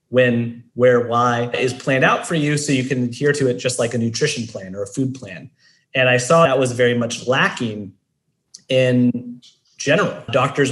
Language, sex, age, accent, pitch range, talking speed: English, male, 30-49, American, 120-140 Hz, 190 wpm